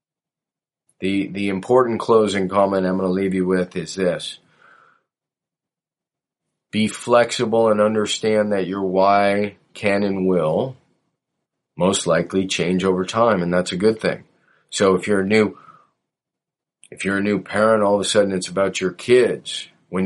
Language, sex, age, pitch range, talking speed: English, male, 40-59, 95-105 Hz, 155 wpm